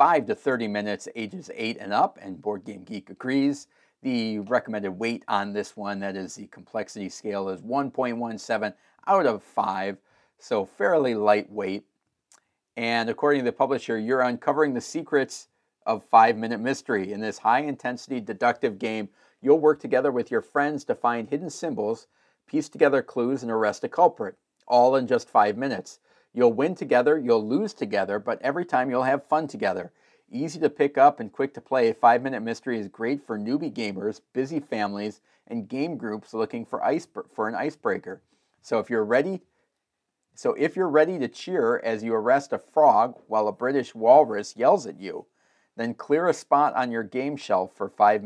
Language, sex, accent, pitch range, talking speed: English, male, American, 105-130 Hz, 180 wpm